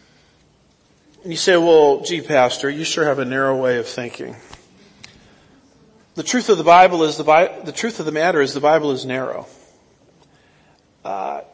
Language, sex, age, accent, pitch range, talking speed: English, male, 40-59, American, 135-175 Hz, 160 wpm